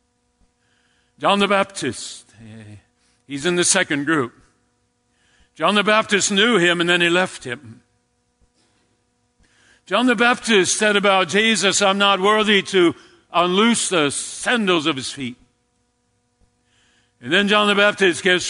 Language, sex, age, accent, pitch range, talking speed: English, male, 60-79, American, 150-200 Hz, 130 wpm